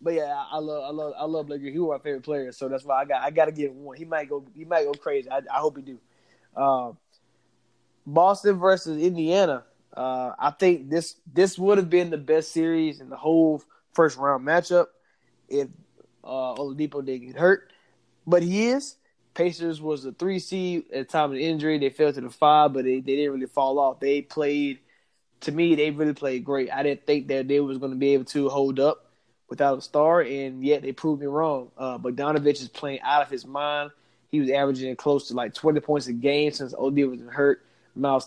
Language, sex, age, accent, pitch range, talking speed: English, male, 20-39, American, 135-160 Hz, 220 wpm